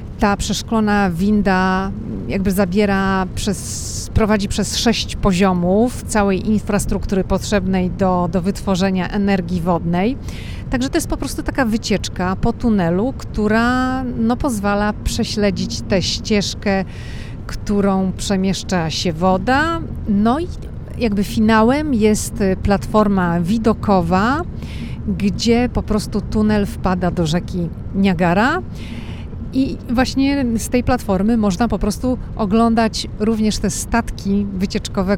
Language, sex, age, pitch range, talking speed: Polish, female, 40-59, 185-215 Hz, 110 wpm